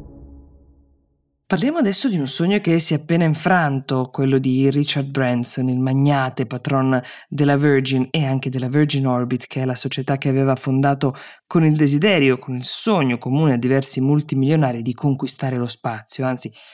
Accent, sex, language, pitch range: native, female, Italian, 130-155 Hz